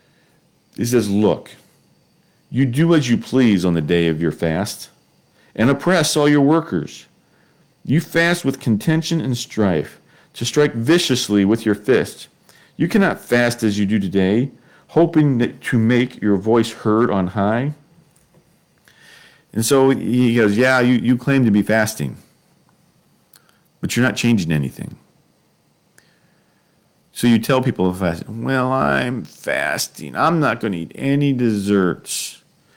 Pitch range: 105-145 Hz